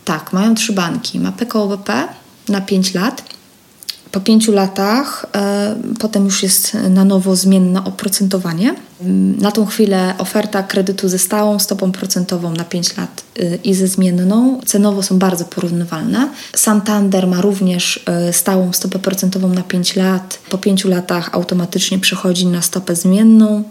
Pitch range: 185-220 Hz